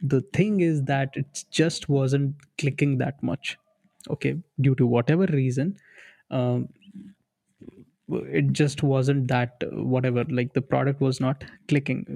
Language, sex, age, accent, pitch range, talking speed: Hindi, male, 20-39, native, 125-140 Hz, 135 wpm